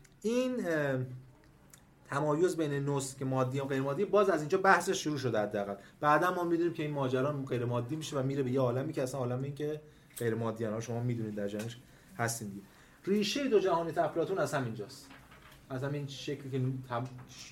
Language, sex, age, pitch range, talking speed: Persian, male, 30-49, 120-150 Hz, 180 wpm